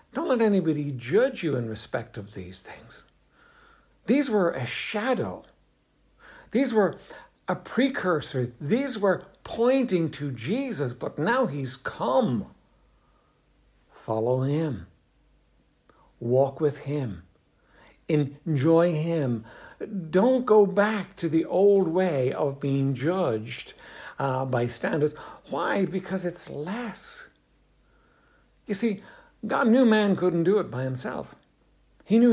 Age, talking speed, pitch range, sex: 60-79, 115 wpm, 140-210 Hz, male